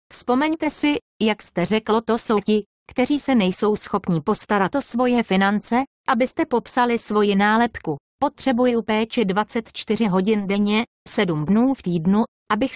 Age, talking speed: 30-49, 140 wpm